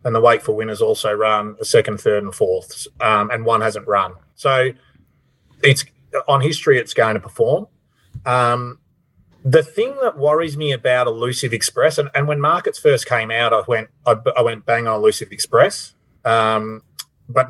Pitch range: 115-155 Hz